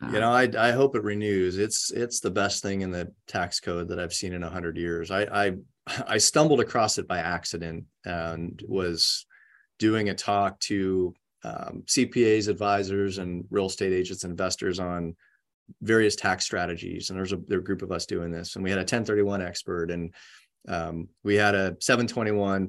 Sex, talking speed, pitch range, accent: male, 185 wpm, 90-110 Hz, American